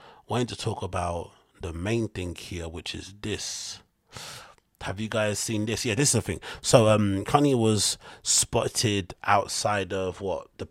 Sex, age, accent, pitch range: male, 30-49, British, 90-100 Hz